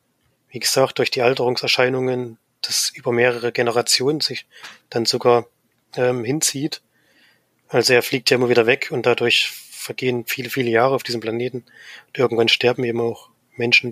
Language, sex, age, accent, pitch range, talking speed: German, male, 20-39, German, 115-125 Hz, 155 wpm